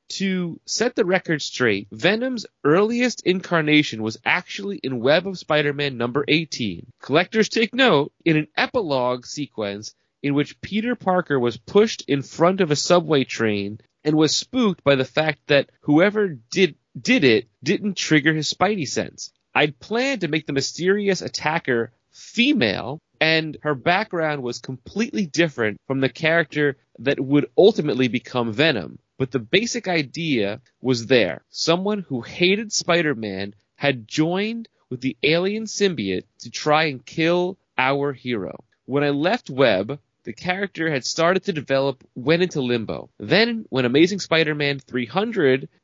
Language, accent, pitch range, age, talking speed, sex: English, American, 130-180 Hz, 30-49, 150 wpm, male